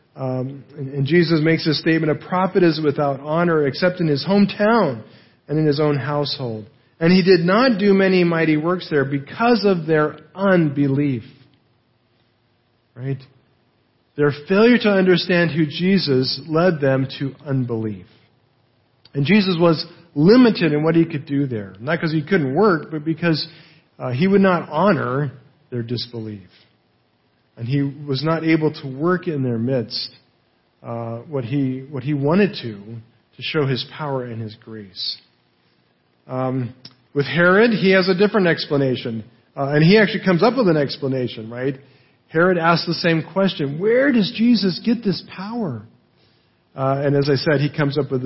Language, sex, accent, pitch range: English, male, American, 125-170 Hz